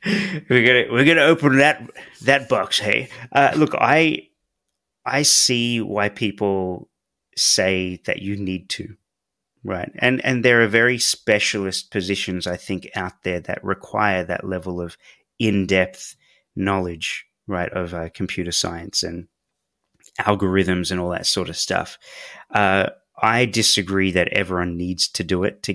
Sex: male